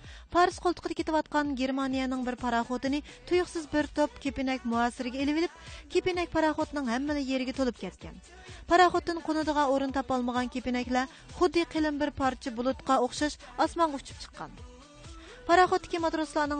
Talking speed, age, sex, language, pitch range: 135 wpm, 30-49, female, English, 260-325 Hz